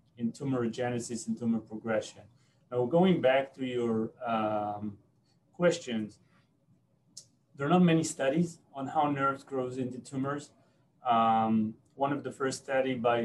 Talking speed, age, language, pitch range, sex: 135 wpm, 30-49, English, 115-130 Hz, male